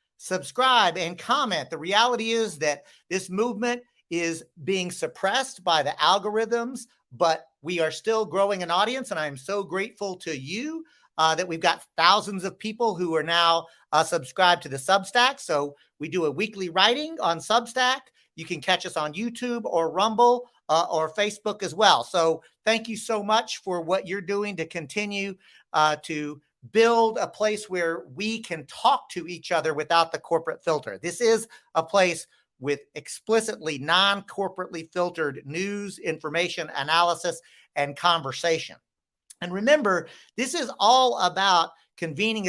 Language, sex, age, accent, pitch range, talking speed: English, male, 50-69, American, 165-220 Hz, 155 wpm